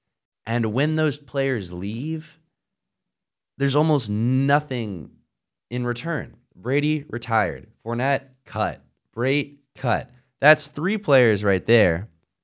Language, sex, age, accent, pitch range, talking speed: English, male, 20-39, American, 90-125 Hz, 100 wpm